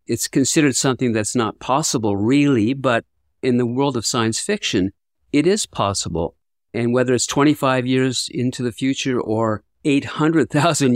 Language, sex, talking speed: English, male, 150 wpm